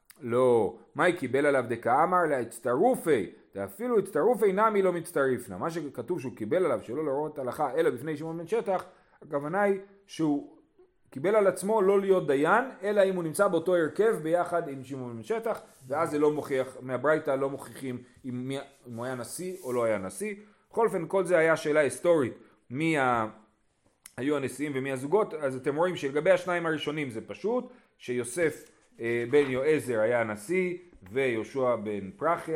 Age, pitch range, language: 30-49, 125-175 Hz, Hebrew